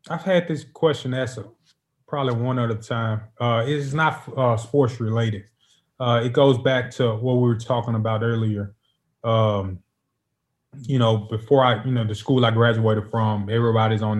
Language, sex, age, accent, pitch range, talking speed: English, male, 20-39, American, 105-125 Hz, 170 wpm